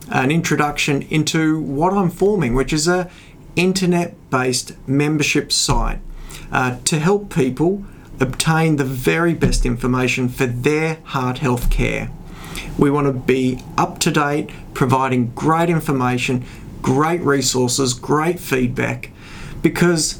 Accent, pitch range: Australian, 130-160 Hz